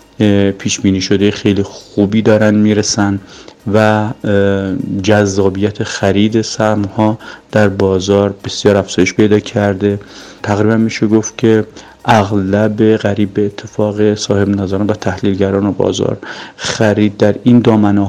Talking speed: 105 wpm